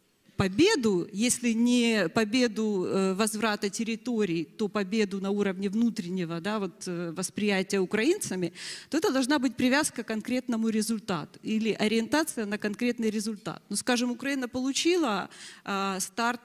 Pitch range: 200-245 Hz